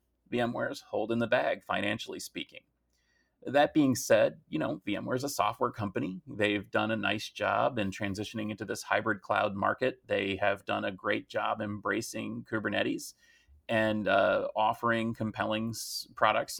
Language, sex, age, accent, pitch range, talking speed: English, male, 30-49, American, 105-135 Hz, 150 wpm